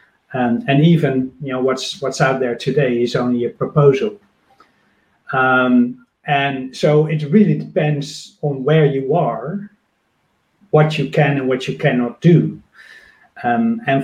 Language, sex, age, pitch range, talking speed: English, male, 40-59, 130-155 Hz, 145 wpm